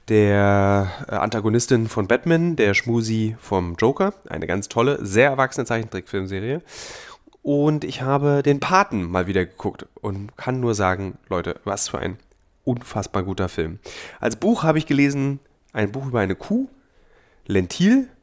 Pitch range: 105-145 Hz